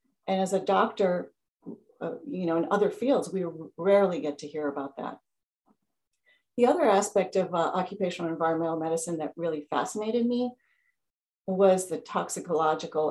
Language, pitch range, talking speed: English, 160-195 Hz, 150 wpm